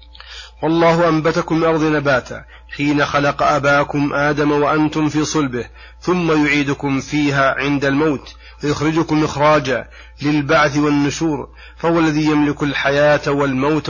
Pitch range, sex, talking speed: 140-155 Hz, male, 110 wpm